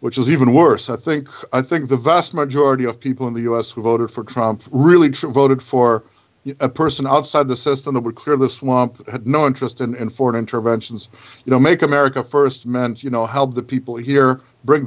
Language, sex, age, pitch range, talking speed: English, male, 50-69, 120-145 Hz, 220 wpm